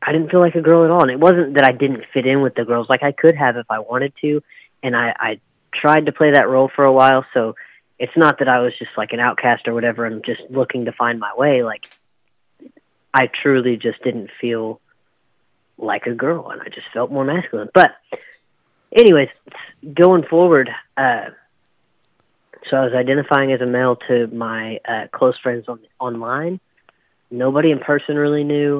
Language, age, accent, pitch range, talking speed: English, 30-49, American, 120-150 Hz, 200 wpm